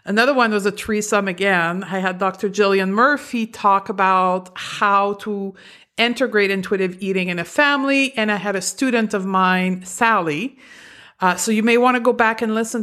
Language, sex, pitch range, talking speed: English, female, 185-220 Hz, 185 wpm